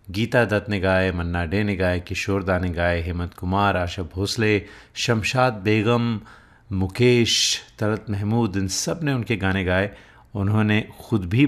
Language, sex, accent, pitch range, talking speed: Hindi, male, native, 95-115 Hz, 155 wpm